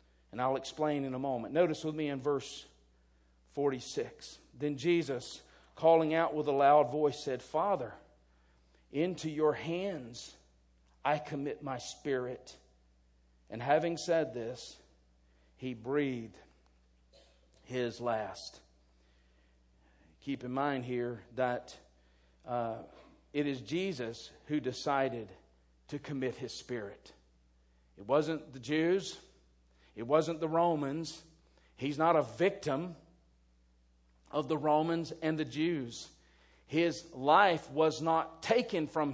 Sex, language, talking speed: male, English, 115 wpm